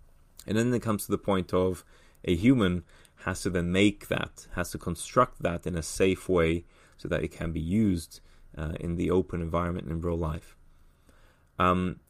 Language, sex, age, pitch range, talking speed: English, male, 30-49, 85-100 Hz, 190 wpm